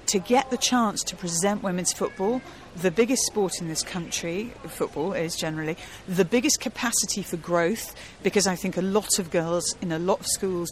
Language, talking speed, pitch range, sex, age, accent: English, 190 wpm, 175-215 Hz, female, 40-59, British